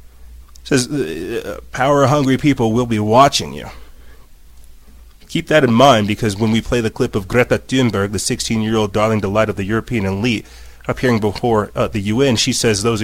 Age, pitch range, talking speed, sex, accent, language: 30-49, 100-125 Hz, 170 wpm, male, American, English